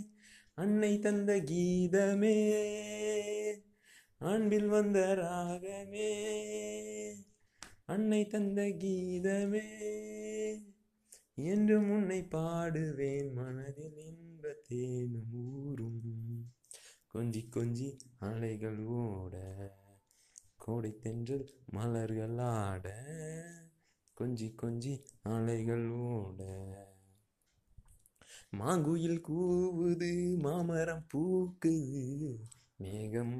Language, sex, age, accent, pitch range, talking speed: Tamil, male, 30-49, native, 110-175 Hz, 50 wpm